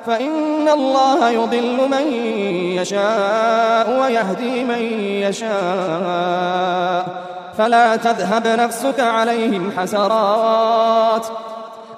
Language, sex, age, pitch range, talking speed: Indonesian, male, 20-39, 190-235 Hz, 65 wpm